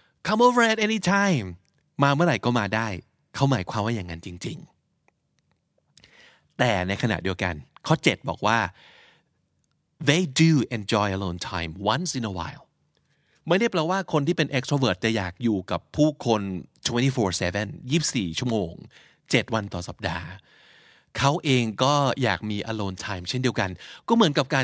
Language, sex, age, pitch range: Thai, male, 20-39, 105-150 Hz